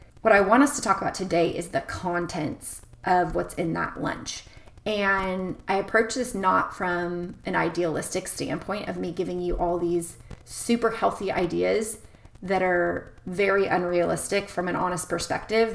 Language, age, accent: English, 30-49, American